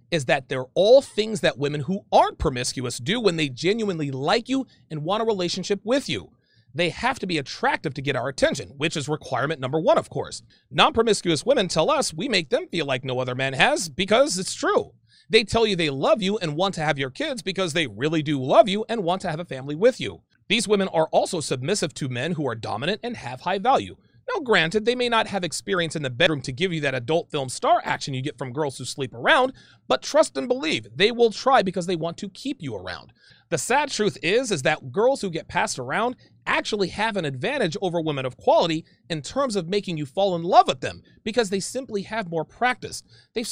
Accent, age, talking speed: American, 40-59, 235 wpm